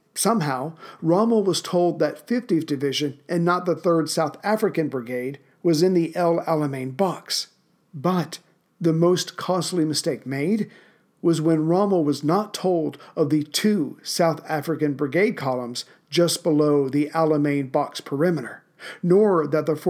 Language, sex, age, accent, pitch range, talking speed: English, male, 50-69, American, 150-180 Hz, 145 wpm